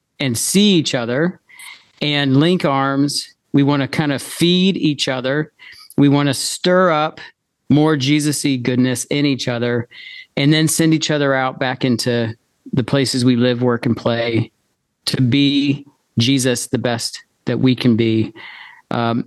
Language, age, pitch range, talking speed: English, 40-59, 125-155 Hz, 155 wpm